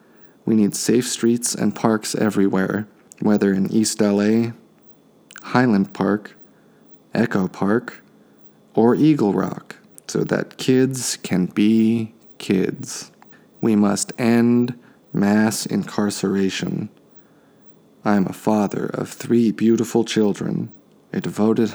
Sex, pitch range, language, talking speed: male, 100-115 Hz, English, 110 wpm